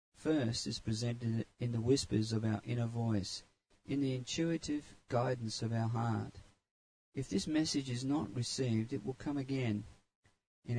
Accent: Australian